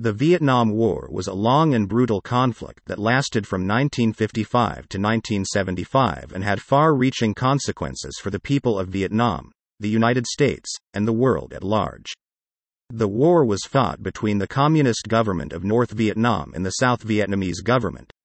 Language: English